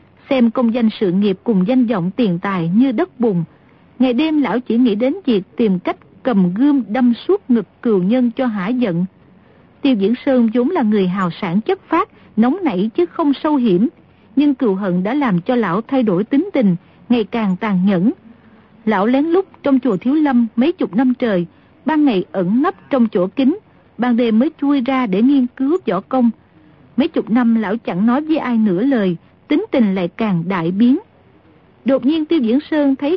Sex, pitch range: female, 215-280 Hz